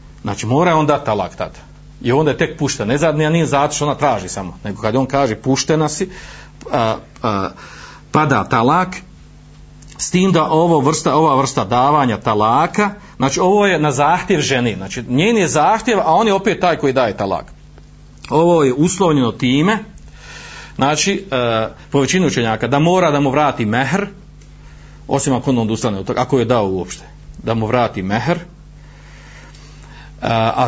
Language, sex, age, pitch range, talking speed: Croatian, male, 40-59, 125-180 Hz, 160 wpm